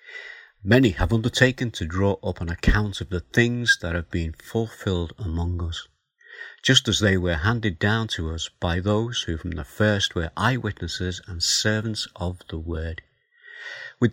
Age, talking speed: 50-69, 165 wpm